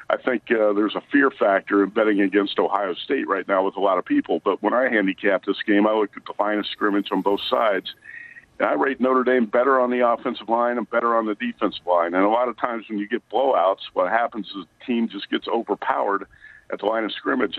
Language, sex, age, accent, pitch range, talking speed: English, male, 50-69, American, 100-120 Hz, 250 wpm